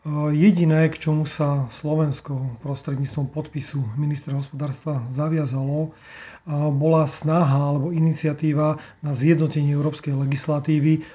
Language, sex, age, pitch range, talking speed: Slovak, male, 40-59, 145-160 Hz, 95 wpm